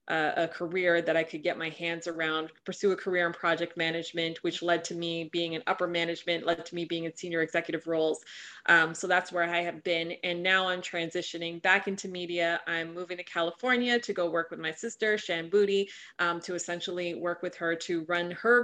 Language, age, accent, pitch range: English, 20-39, American, 165-180 Hz